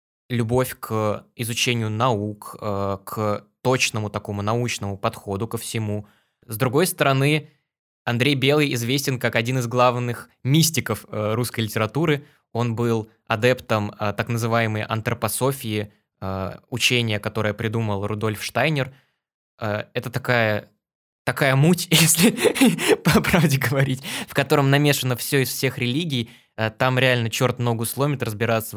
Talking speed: 115 wpm